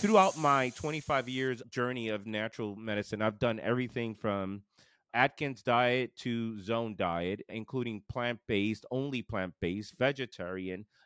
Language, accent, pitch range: English, American, 105-130 Hz